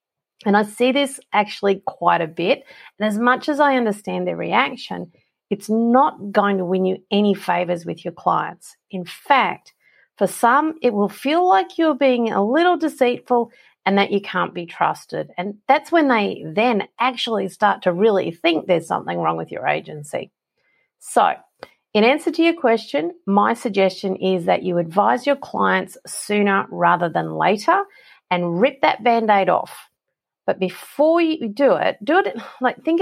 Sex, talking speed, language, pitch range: female, 170 wpm, English, 185-265 Hz